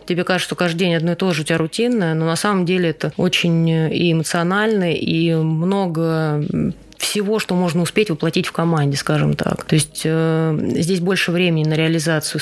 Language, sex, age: Russian, female, 20-39